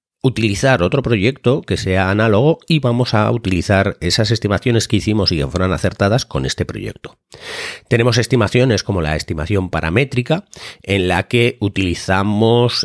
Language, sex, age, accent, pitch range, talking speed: Spanish, male, 40-59, Spanish, 80-110 Hz, 145 wpm